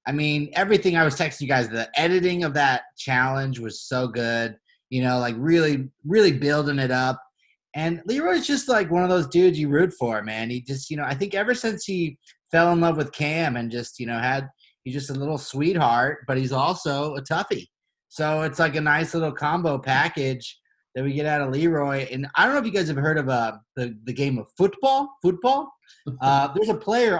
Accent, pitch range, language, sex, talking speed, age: American, 135-180 Hz, English, male, 220 wpm, 30-49